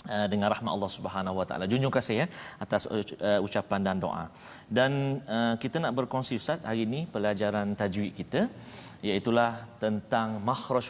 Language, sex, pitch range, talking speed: Malayalam, male, 120-150 Hz, 150 wpm